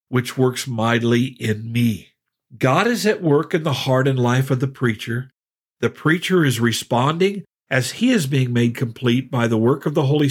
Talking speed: 190 wpm